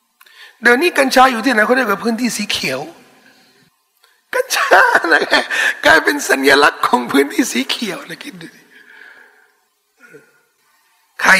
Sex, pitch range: male, 180-270 Hz